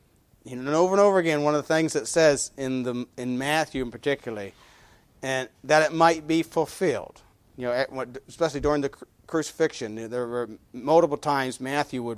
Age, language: 40-59, English